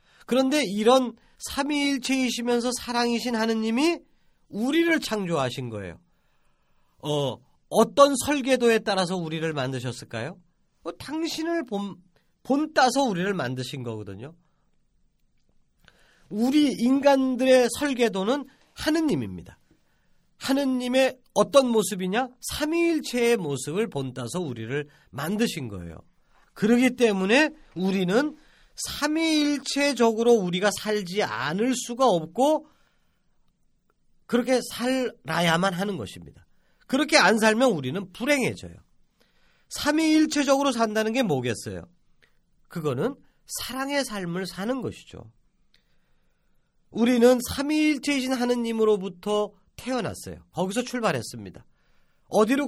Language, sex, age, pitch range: Korean, male, 40-59, 180-265 Hz